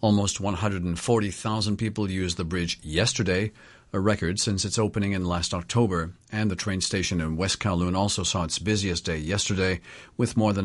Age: 50-69